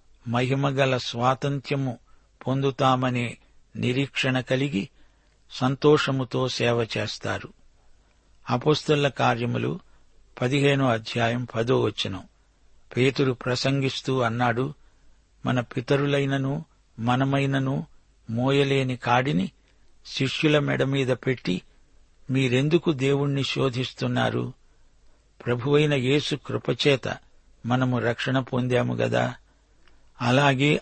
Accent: native